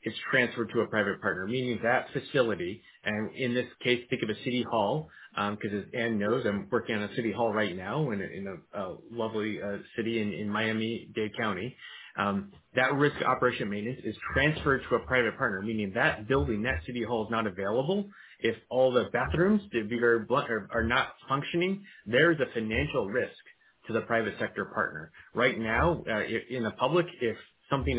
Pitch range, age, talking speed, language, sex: 105-130 Hz, 30-49, 195 wpm, English, male